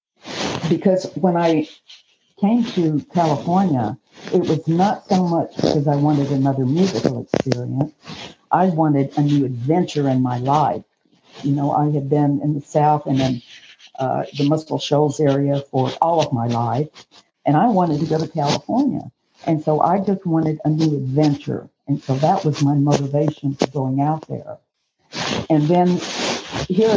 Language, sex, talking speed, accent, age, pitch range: English, female, 160 wpm, American, 60-79, 140-180 Hz